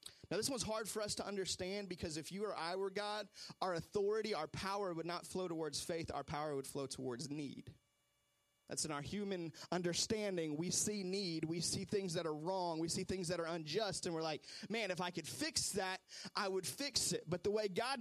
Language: English